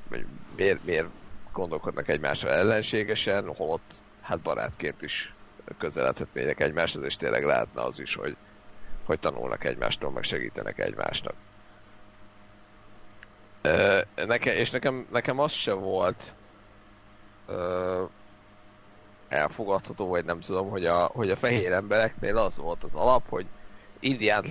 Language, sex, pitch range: Hungarian, male, 100-110 Hz